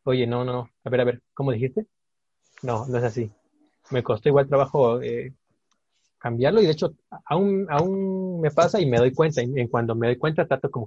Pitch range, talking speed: 115-140 Hz, 205 wpm